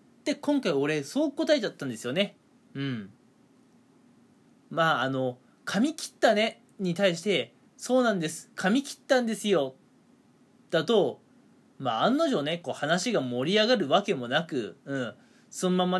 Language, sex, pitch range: Japanese, male, 155-250 Hz